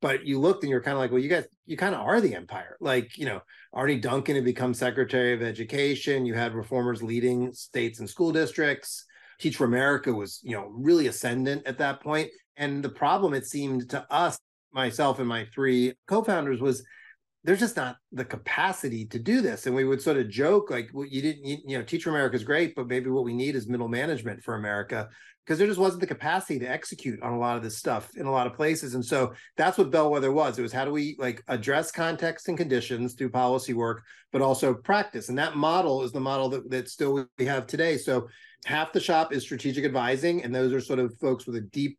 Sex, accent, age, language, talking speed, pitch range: male, American, 30-49, English, 235 wpm, 125-145 Hz